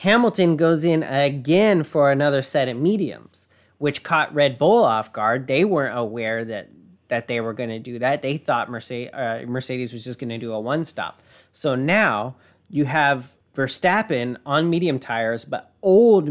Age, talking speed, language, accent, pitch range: 30-49, 180 wpm, English, American, 120-160 Hz